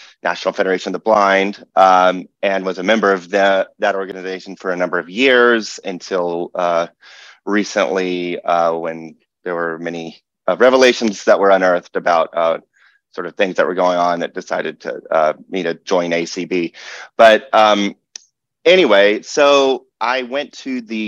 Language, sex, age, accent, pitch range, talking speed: English, male, 30-49, American, 90-105 Hz, 160 wpm